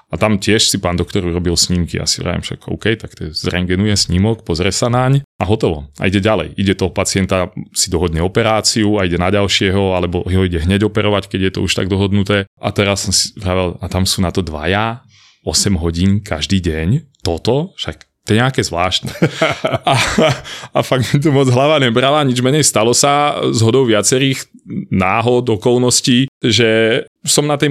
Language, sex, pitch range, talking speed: Slovak, male, 95-120 Hz, 195 wpm